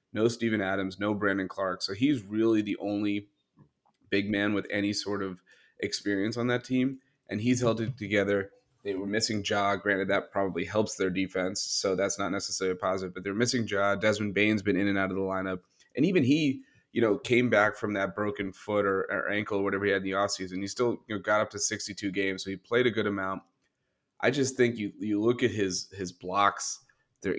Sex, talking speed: male, 225 wpm